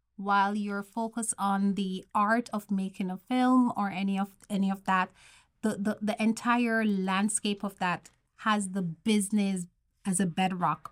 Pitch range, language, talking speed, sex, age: 190-220 Hz, English, 160 wpm, female, 30-49